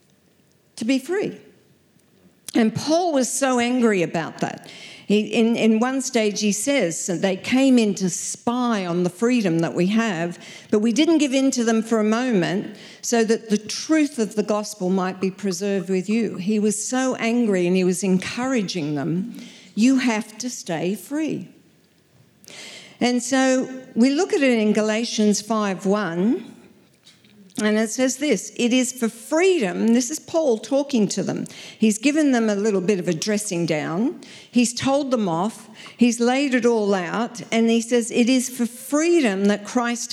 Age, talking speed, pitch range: 50-69, 170 wpm, 200-250 Hz